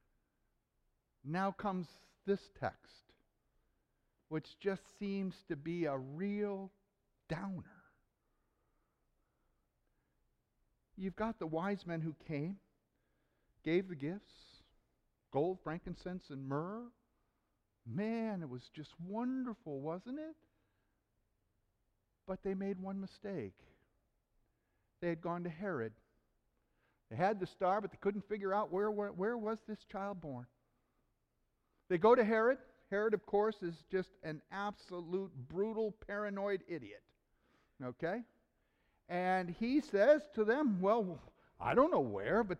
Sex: male